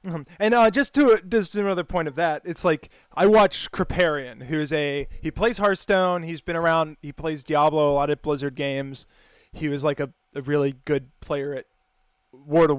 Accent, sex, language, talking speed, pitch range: American, male, English, 195 wpm, 150-200 Hz